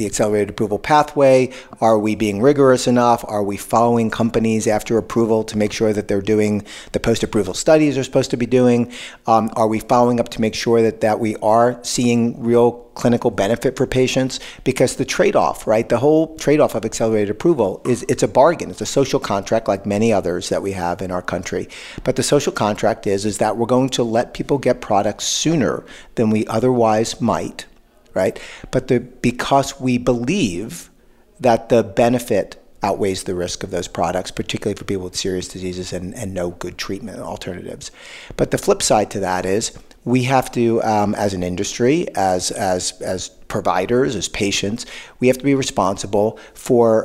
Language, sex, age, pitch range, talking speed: English, male, 50-69, 105-125 Hz, 185 wpm